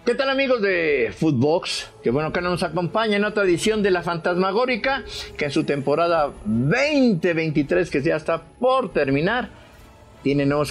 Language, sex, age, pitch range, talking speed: English, male, 50-69, 120-180 Hz, 160 wpm